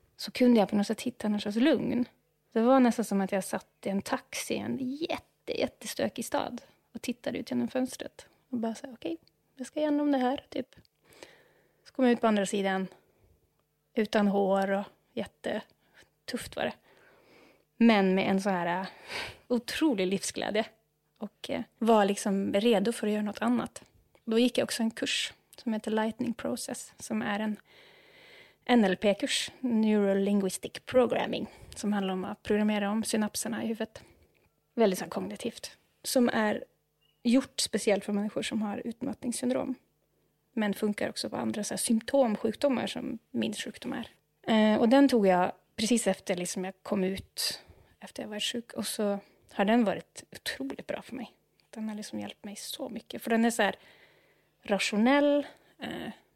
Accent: Swedish